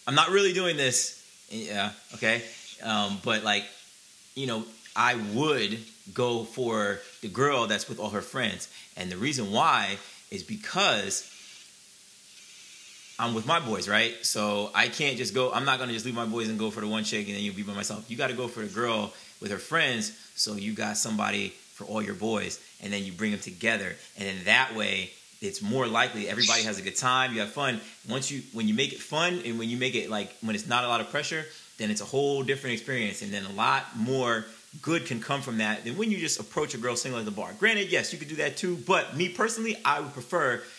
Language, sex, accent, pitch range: English, male, American, 105-140 Hz